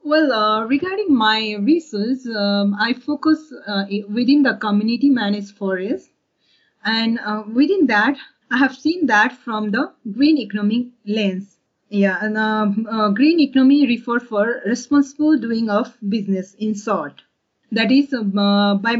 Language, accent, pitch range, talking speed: English, Indian, 210-275 Hz, 140 wpm